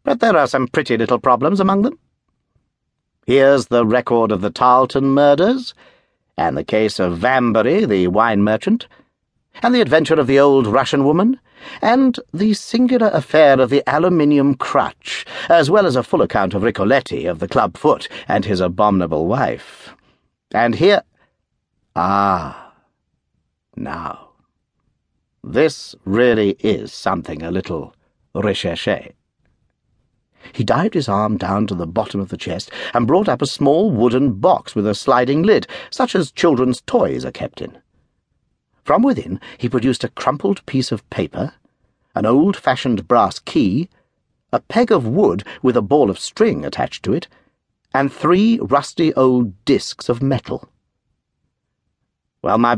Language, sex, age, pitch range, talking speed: English, male, 60-79, 110-165 Hz, 150 wpm